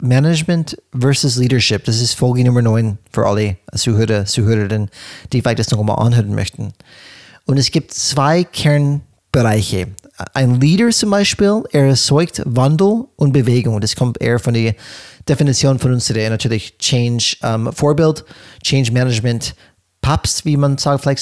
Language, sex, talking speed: German, male, 135 wpm